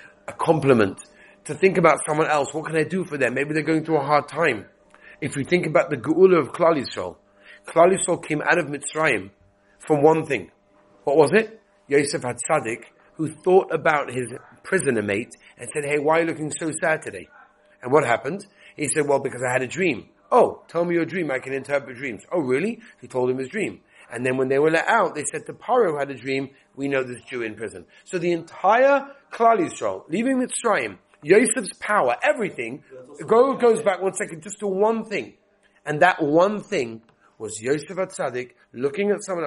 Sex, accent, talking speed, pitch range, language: male, British, 205 wpm, 120-170 Hz, English